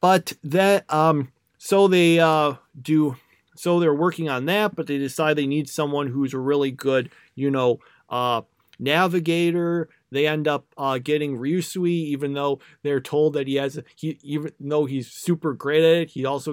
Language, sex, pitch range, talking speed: English, male, 140-170 Hz, 180 wpm